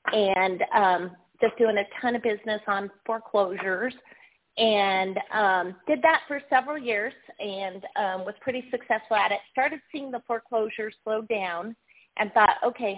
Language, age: English, 30-49